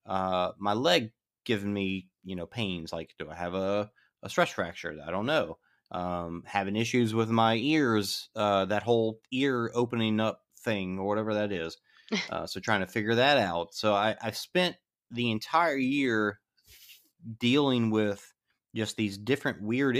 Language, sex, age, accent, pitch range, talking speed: English, male, 30-49, American, 95-120 Hz, 170 wpm